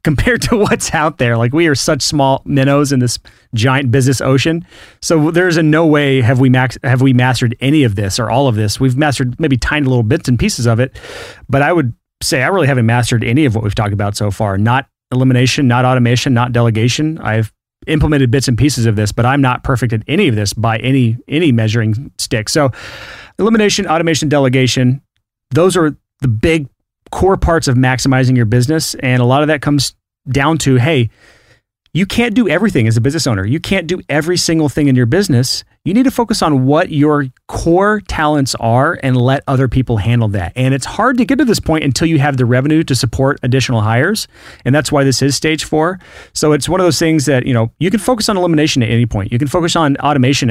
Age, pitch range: 30-49, 120-150 Hz